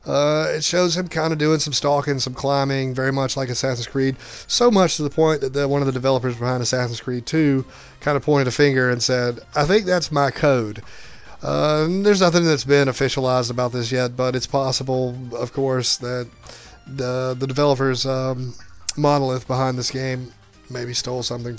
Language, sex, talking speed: English, male, 190 wpm